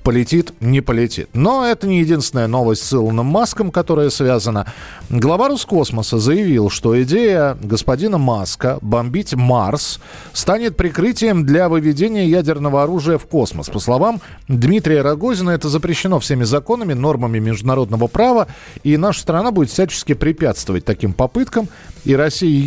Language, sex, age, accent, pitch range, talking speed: Russian, male, 40-59, native, 130-190 Hz, 135 wpm